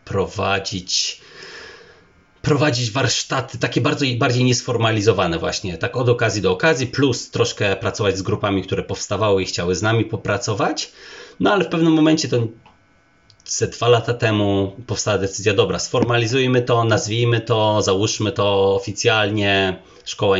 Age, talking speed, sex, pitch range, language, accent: 30-49, 130 wpm, male, 95-120 Hz, Polish, native